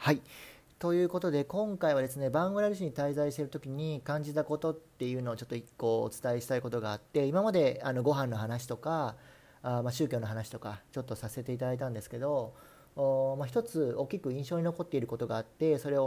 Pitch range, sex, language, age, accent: 125-165 Hz, male, Japanese, 40-59, native